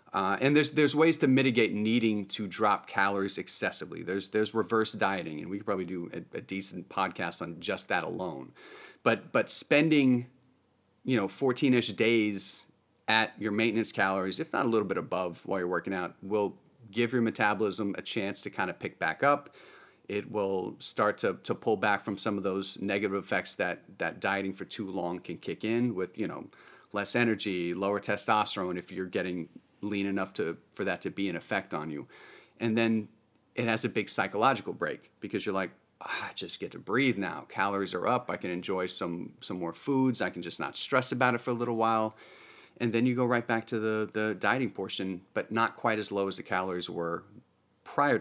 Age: 30-49